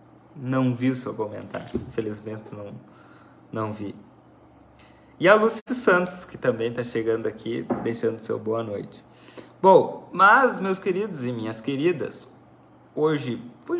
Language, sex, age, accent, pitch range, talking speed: Portuguese, male, 20-39, Brazilian, 110-135 Hz, 135 wpm